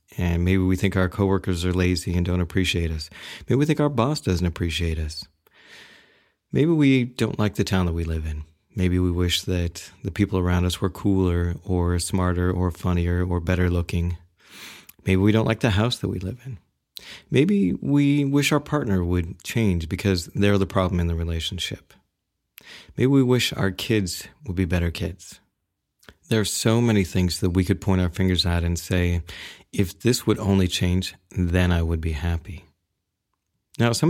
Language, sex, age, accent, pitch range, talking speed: English, male, 30-49, American, 90-105 Hz, 185 wpm